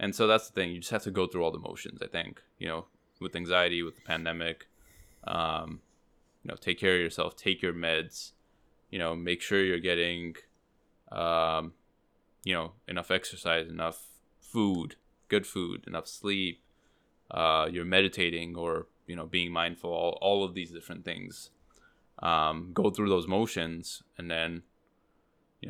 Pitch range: 85-100 Hz